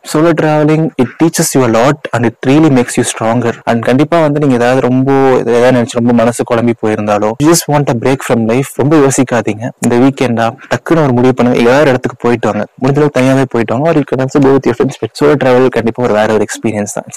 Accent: native